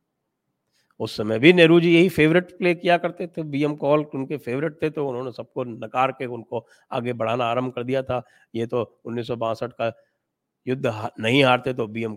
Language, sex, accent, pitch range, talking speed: English, male, Indian, 115-150 Hz, 185 wpm